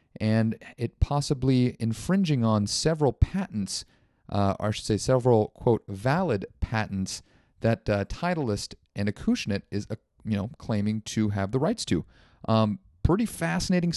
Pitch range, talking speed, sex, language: 105-145 Hz, 140 wpm, male, English